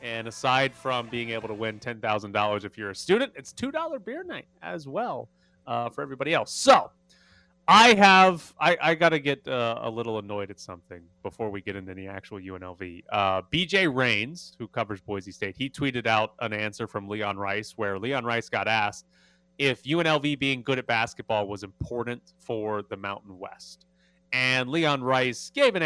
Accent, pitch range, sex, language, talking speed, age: American, 110-170 Hz, male, English, 180 wpm, 30-49